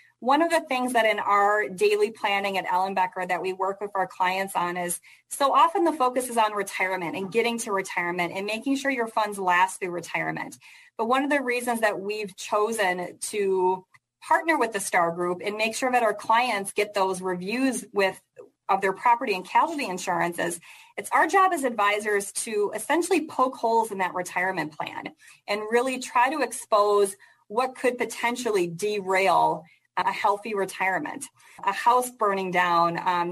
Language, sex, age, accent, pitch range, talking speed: English, female, 30-49, American, 190-250 Hz, 180 wpm